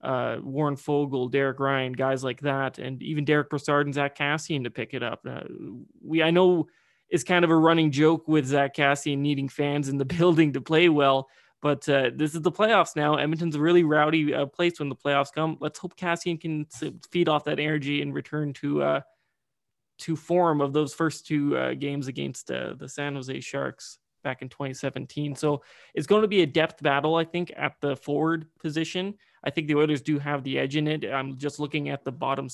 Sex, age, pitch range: male, 20-39, 135-155 Hz